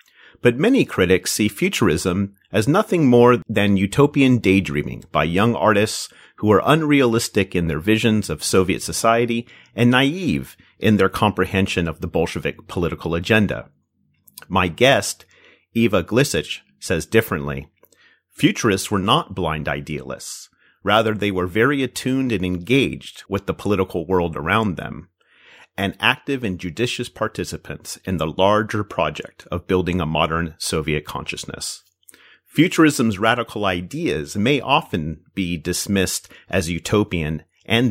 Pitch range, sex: 90-115 Hz, male